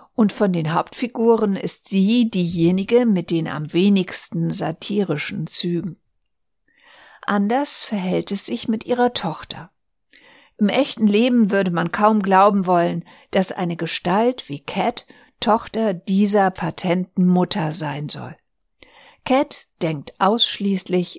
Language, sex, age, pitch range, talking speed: German, female, 60-79, 165-215 Hz, 120 wpm